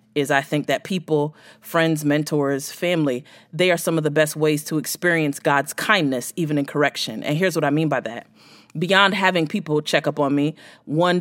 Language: English